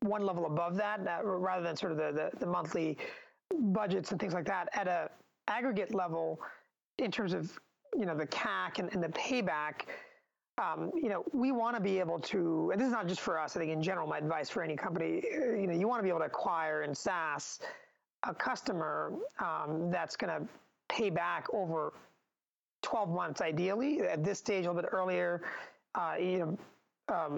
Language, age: English, 30-49